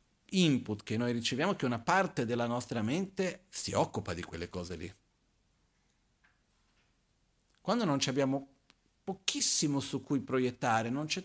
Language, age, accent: Italian, 50-69, native